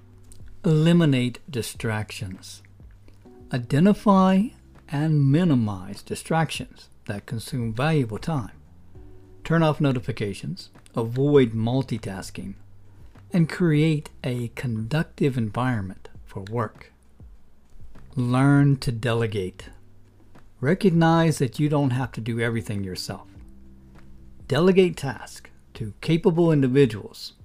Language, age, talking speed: English, 60-79, 85 wpm